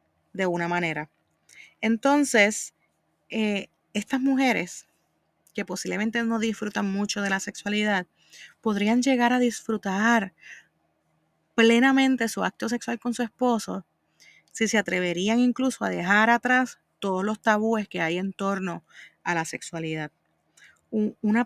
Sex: female